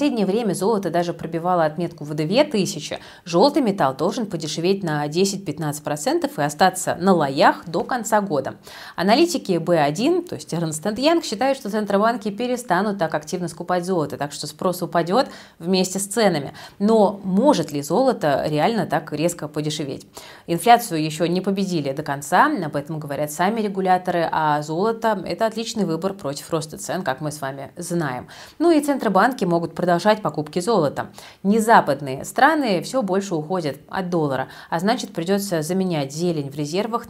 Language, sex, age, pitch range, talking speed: Russian, female, 30-49, 160-210 Hz, 160 wpm